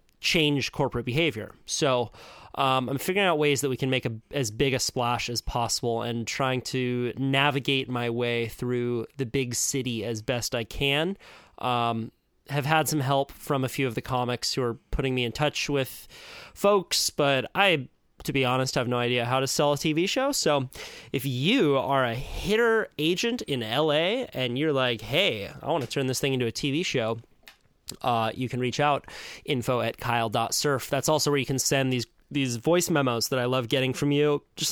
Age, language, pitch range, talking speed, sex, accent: 20-39, English, 125-145 Hz, 195 wpm, male, American